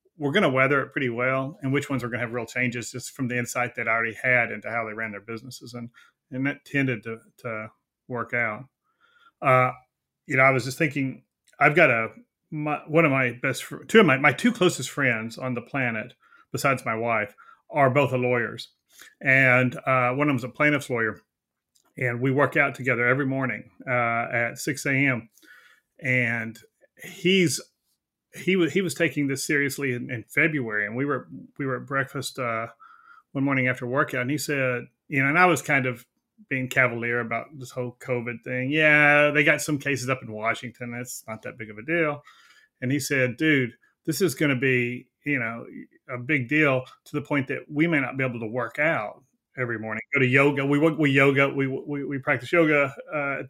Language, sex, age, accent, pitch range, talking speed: English, male, 30-49, American, 120-145 Hz, 205 wpm